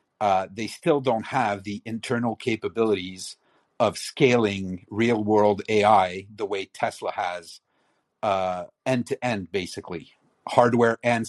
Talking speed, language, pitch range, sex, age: 110 wpm, English, 100-120 Hz, male, 50-69